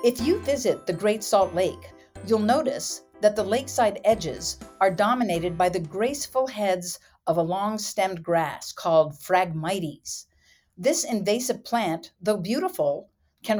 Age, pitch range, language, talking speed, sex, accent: 50-69, 175-230 Hz, English, 140 wpm, female, American